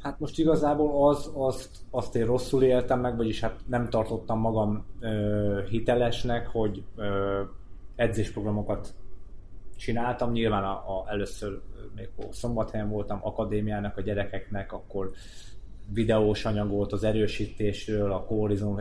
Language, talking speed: Hungarian, 130 wpm